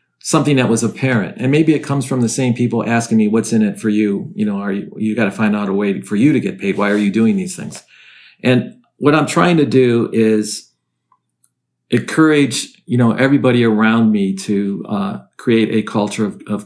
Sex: male